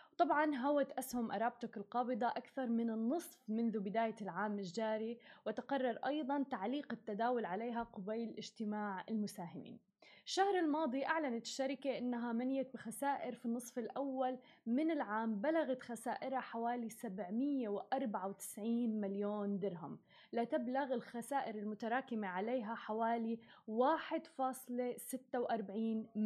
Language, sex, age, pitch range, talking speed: Arabic, female, 20-39, 215-265 Hz, 100 wpm